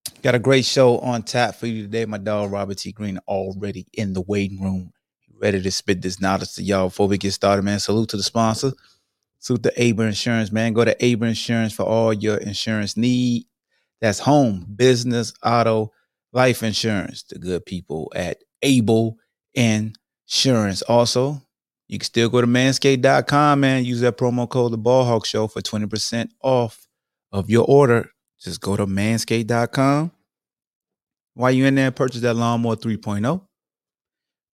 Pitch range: 100-125 Hz